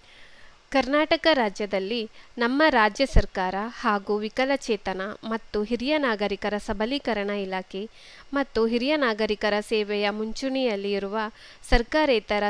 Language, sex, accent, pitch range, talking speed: English, female, Indian, 205-255 Hz, 85 wpm